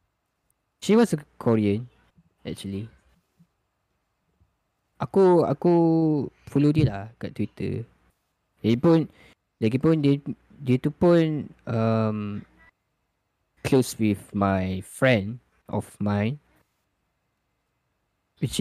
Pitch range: 105-145 Hz